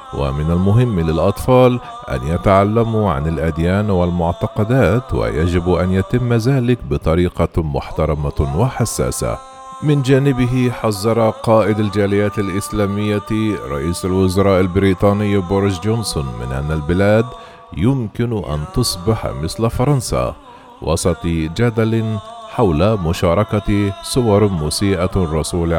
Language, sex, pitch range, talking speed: Arabic, male, 80-115 Hz, 95 wpm